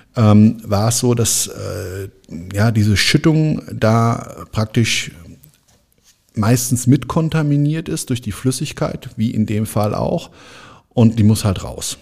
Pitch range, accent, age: 100-120 Hz, German, 50-69